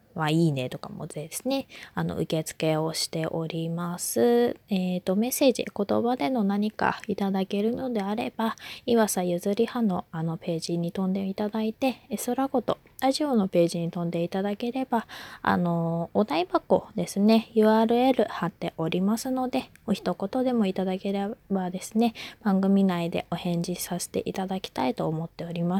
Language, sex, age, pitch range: Japanese, female, 20-39, 175-230 Hz